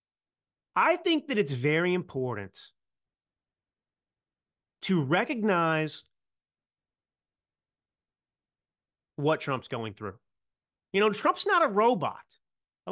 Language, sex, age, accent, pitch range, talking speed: English, male, 30-49, American, 130-200 Hz, 90 wpm